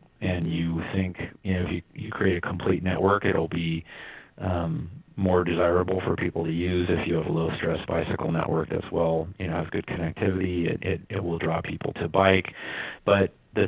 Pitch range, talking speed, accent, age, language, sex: 85-95 Hz, 195 wpm, American, 40-59, English, male